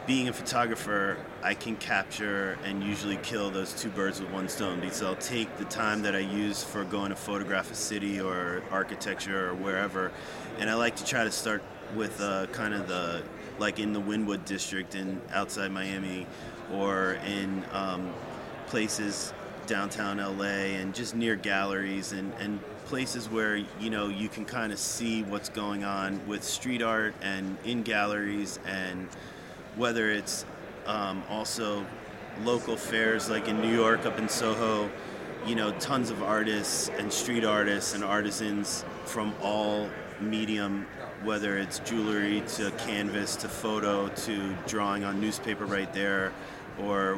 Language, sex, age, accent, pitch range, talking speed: English, male, 30-49, American, 95-110 Hz, 160 wpm